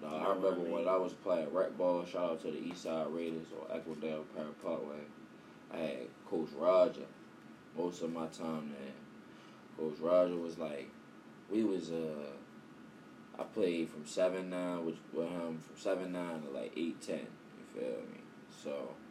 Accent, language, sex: American, English, male